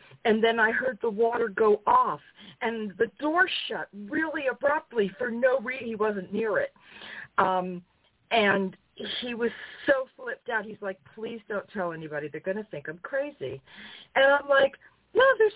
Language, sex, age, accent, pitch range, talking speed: English, female, 40-59, American, 190-270 Hz, 175 wpm